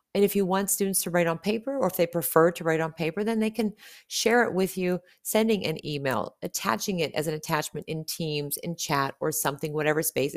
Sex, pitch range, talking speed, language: female, 160-200 Hz, 230 wpm, English